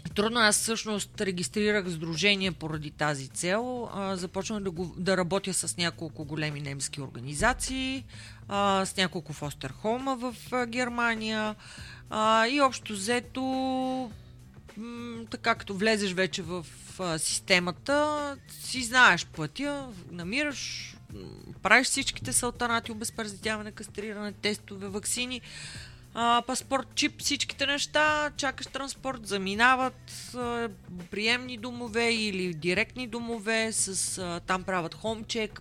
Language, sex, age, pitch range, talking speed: Bulgarian, female, 30-49, 170-235 Hz, 105 wpm